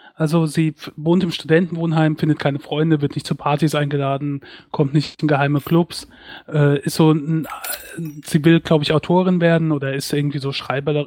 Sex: male